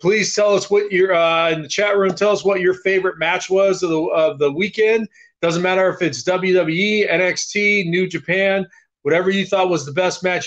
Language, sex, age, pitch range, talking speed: English, male, 30-49, 155-195 Hz, 210 wpm